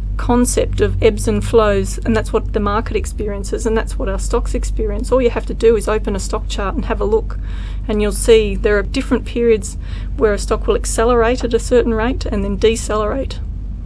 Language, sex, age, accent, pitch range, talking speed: English, female, 30-49, Australian, 200-230 Hz, 215 wpm